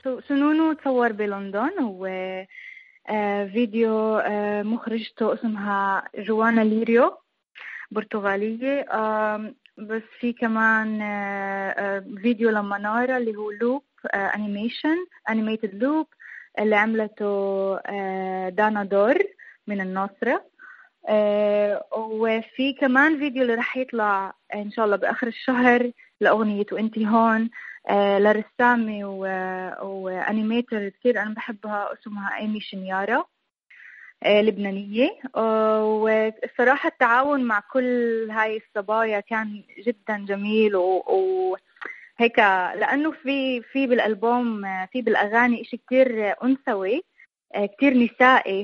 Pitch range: 205-245 Hz